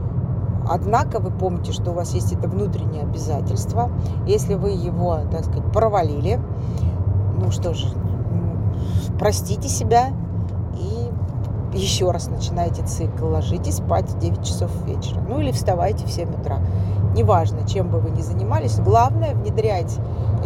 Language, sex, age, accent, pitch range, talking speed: Russian, female, 40-59, native, 100-110 Hz, 135 wpm